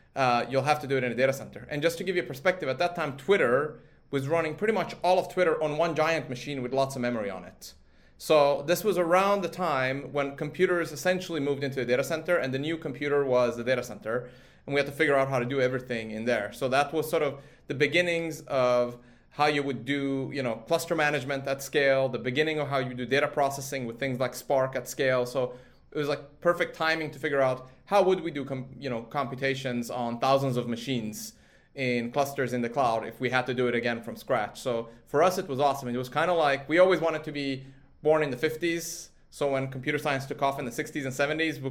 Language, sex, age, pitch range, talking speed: English, male, 30-49, 130-155 Hz, 240 wpm